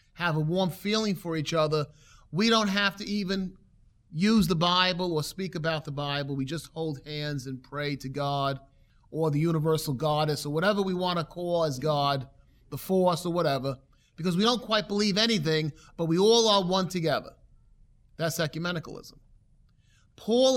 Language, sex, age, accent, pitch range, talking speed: English, male, 30-49, American, 145-195 Hz, 170 wpm